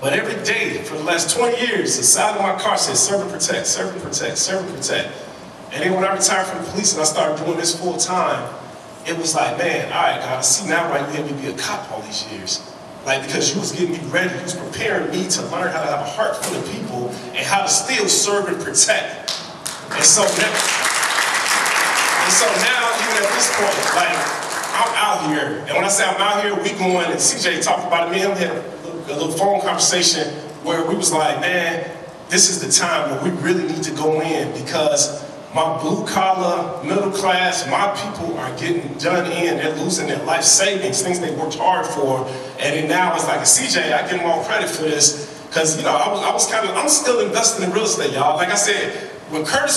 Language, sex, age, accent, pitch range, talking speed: English, male, 30-49, American, 160-200 Hz, 230 wpm